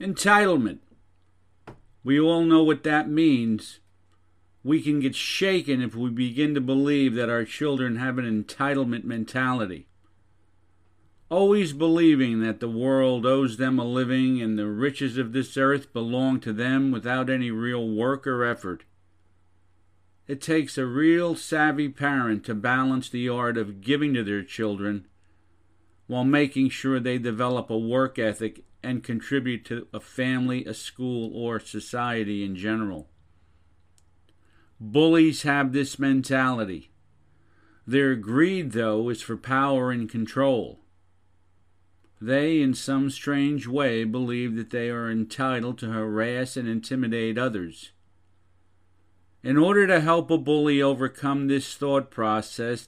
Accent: American